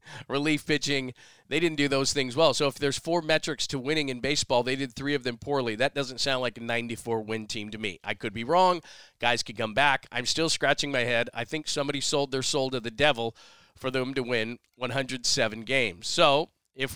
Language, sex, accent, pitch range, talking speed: English, male, American, 120-145 Hz, 220 wpm